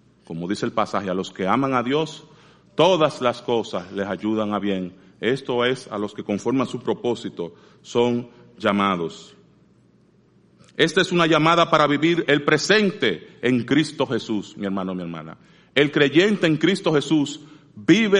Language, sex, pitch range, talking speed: Spanish, male, 120-165 Hz, 160 wpm